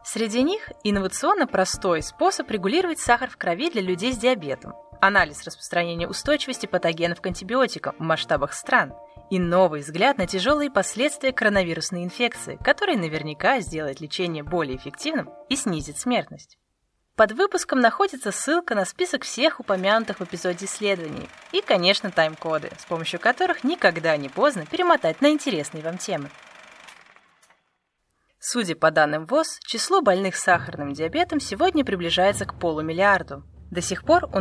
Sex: female